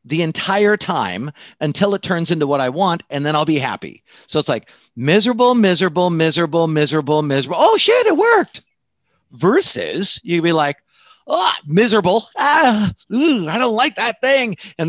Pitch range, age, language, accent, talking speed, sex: 140-185 Hz, 40-59, English, American, 165 wpm, male